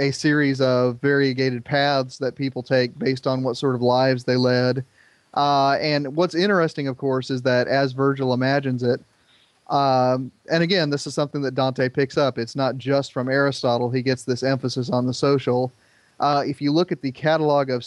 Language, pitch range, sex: English, 125-145 Hz, male